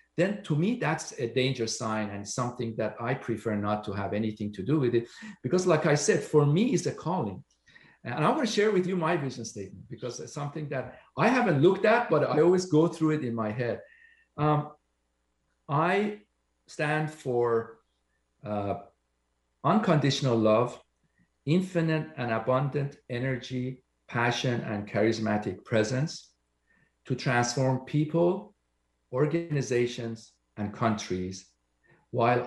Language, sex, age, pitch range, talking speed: English, male, 50-69, 110-160 Hz, 145 wpm